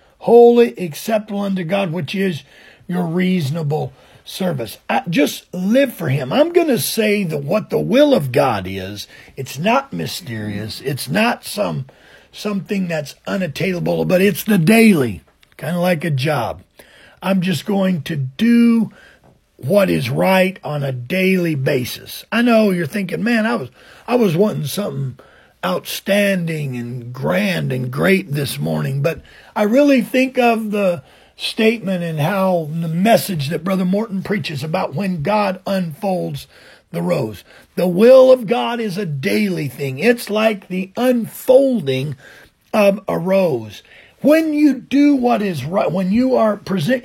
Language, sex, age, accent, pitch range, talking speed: English, male, 50-69, American, 150-225 Hz, 150 wpm